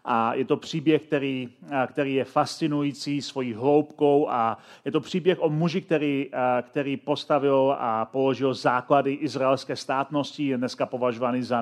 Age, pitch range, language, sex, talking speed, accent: 40-59, 135-160 Hz, Czech, male, 145 wpm, native